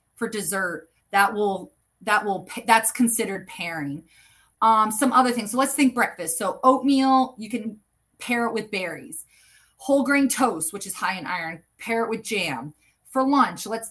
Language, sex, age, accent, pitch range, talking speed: English, female, 30-49, American, 200-265 Hz, 175 wpm